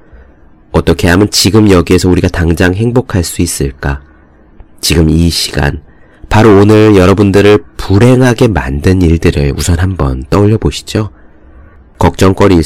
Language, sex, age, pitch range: Korean, male, 40-59, 75-105 Hz